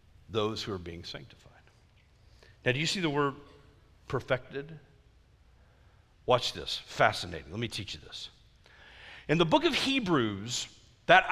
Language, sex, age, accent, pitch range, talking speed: English, male, 50-69, American, 140-215 Hz, 140 wpm